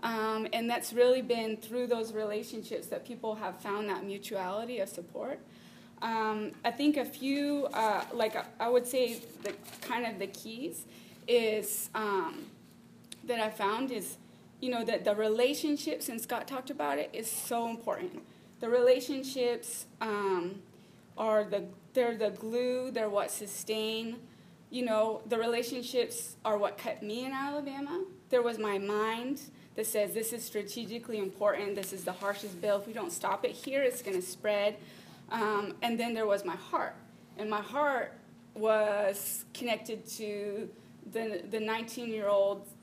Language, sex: English, female